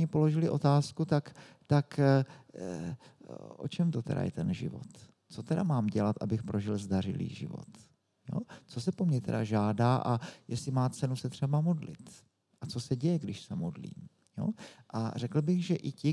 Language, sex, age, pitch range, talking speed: Czech, male, 50-69, 120-155 Hz, 170 wpm